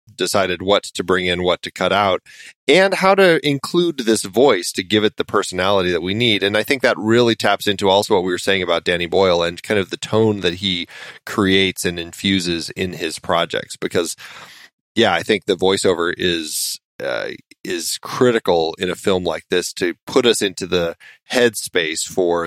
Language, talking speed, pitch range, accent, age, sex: English, 195 wpm, 95-125 Hz, American, 30-49, male